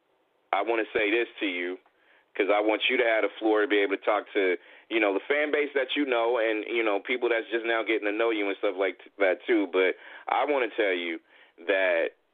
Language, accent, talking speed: English, American, 255 wpm